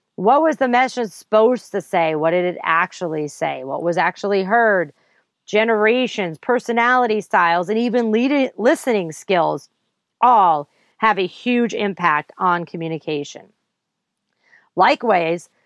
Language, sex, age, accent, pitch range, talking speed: English, female, 40-59, American, 180-245 Hz, 120 wpm